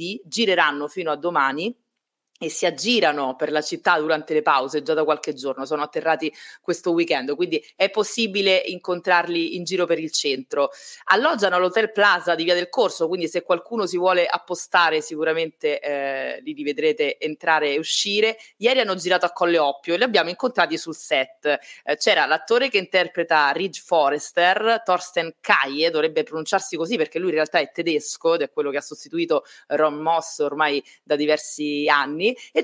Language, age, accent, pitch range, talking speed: Italian, 20-39, native, 155-210 Hz, 170 wpm